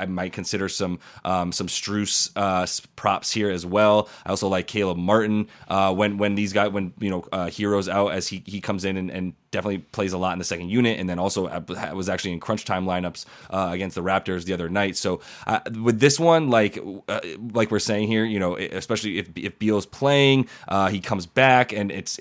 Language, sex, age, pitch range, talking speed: English, male, 20-39, 95-110 Hz, 225 wpm